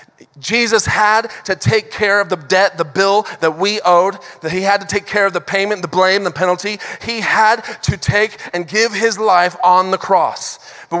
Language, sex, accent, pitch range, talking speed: English, male, American, 195-245 Hz, 205 wpm